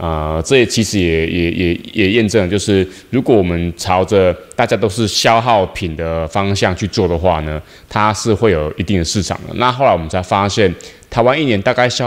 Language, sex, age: Chinese, male, 20-39